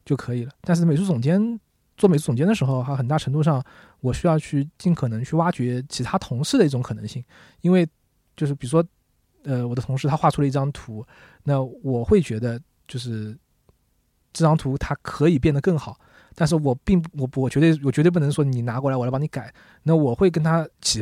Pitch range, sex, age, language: 125-160 Hz, male, 20-39, Chinese